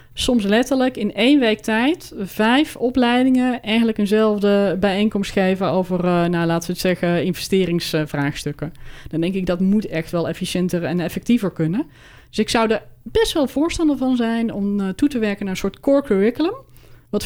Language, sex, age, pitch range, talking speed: Dutch, female, 20-39, 190-245 Hz, 170 wpm